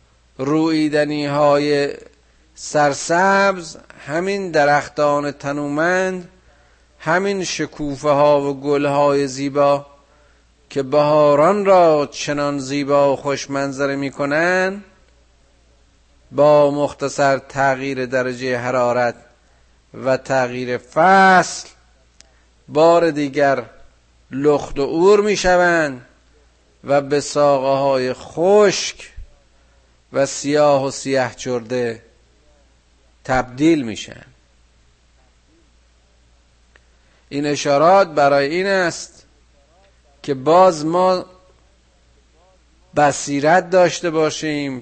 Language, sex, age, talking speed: Persian, male, 50-69, 75 wpm